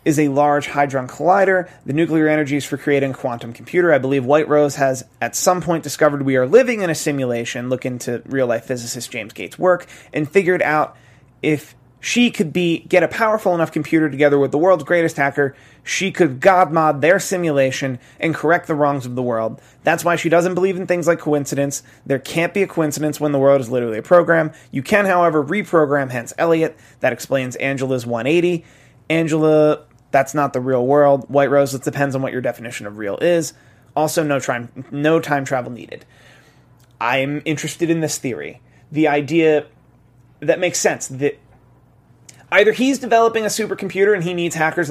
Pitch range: 135-175 Hz